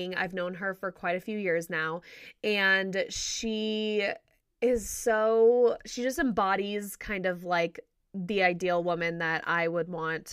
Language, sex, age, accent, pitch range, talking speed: English, female, 20-39, American, 185-230 Hz, 150 wpm